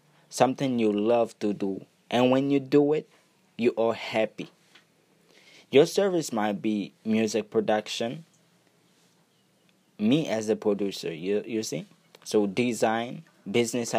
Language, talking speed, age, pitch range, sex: English, 125 wpm, 20-39, 110-165 Hz, male